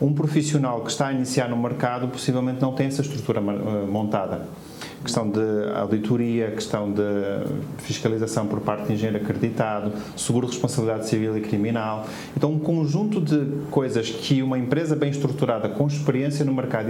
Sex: male